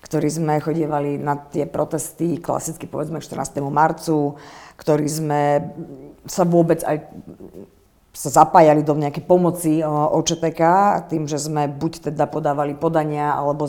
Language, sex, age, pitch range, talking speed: Slovak, female, 50-69, 145-165 Hz, 125 wpm